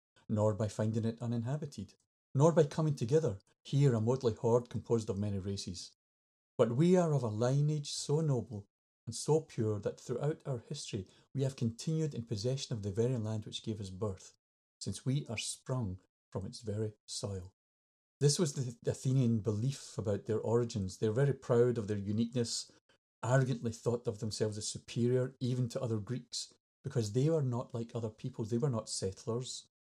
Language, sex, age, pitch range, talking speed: English, male, 40-59, 110-135 Hz, 180 wpm